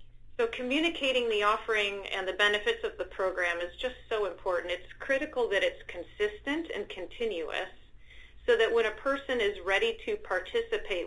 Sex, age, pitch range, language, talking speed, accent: female, 40-59, 180-250 Hz, English, 165 wpm, American